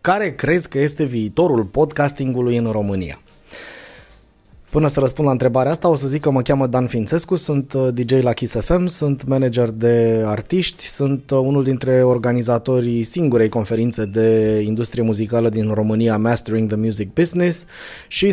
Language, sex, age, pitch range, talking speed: Romanian, male, 20-39, 120-160 Hz, 155 wpm